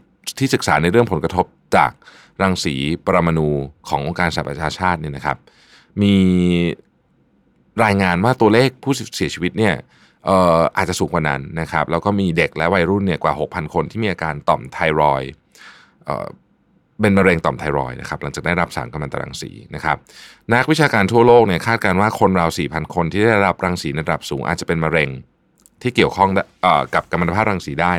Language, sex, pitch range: Thai, male, 80-105 Hz